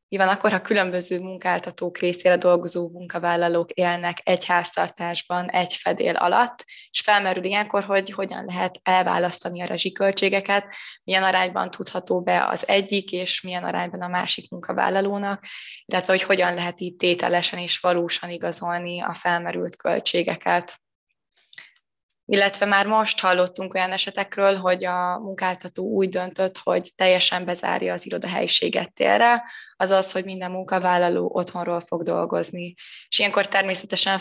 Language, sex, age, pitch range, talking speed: Hungarian, female, 20-39, 180-195 Hz, 130 wpm